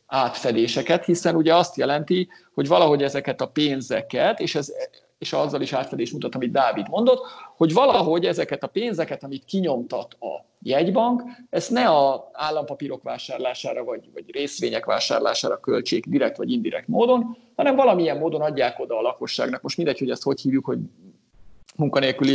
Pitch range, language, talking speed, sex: 130-185 Hz, Hungarian, 155 wpm, male